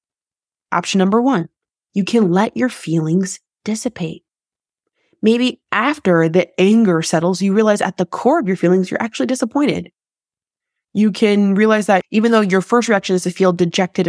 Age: 20-39